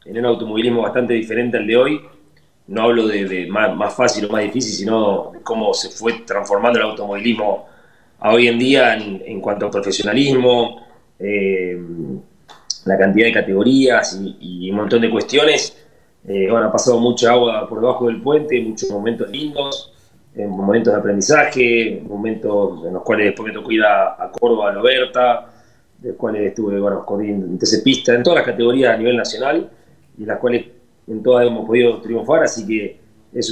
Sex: male